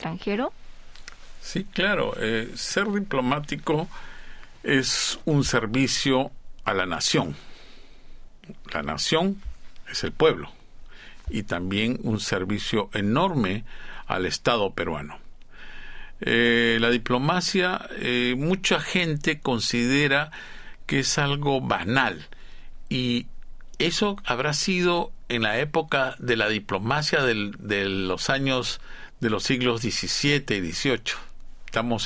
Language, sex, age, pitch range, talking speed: Spanish, male, 50-69, 110-150 Hz, 105 wpm